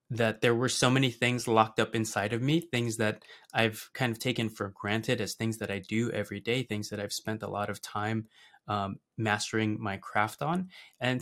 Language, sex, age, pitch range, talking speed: English, male, 20-39, 105-125 Hz, 215 wpm